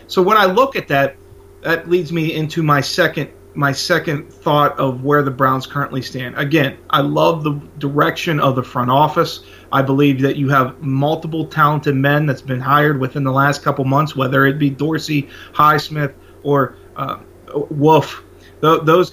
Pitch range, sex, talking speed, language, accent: 135-160 Hz, male, 175 wpm, English, American